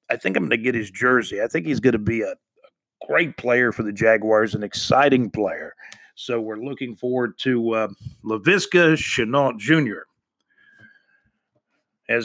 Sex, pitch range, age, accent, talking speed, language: male, 120-160 Hz, 50-69, American, 165 wpm, English